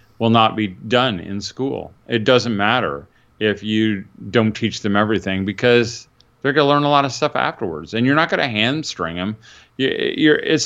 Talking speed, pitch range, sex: 175 wpm, 105-145 Hz, male